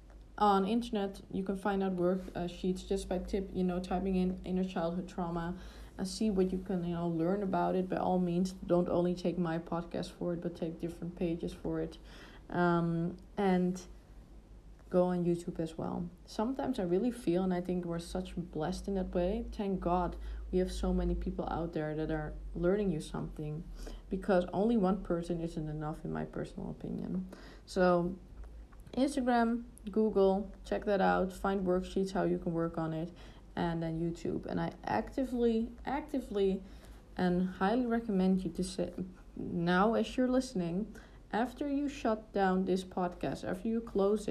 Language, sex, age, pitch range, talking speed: English, female, 20-39, 175-205 Hz, 175 wpm